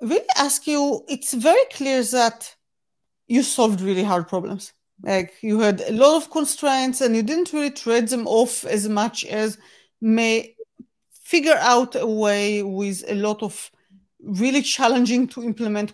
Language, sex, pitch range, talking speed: English, female, 200-255 Hz, 160 wpm